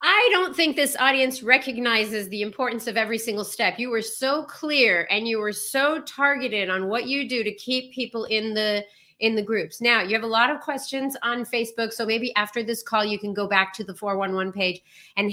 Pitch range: 190-235 Hz